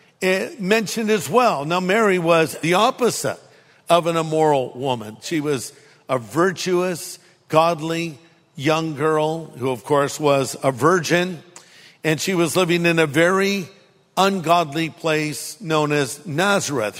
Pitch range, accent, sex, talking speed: 150-185 Hz, American, male, 130 wpm